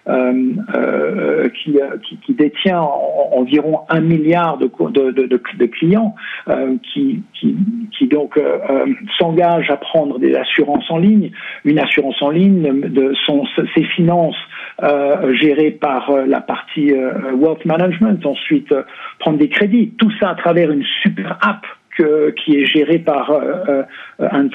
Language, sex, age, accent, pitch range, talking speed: French, male, 60-79, French, 145-210 Hz, 155 wpm